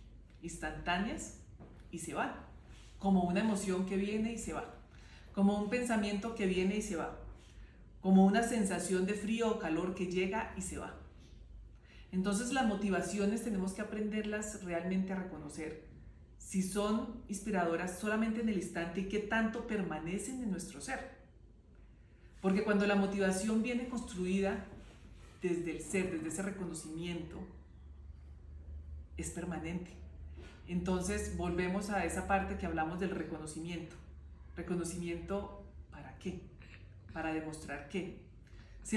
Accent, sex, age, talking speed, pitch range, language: Colombian, female, 40-59, 130 wpm, 160-205 Hz, English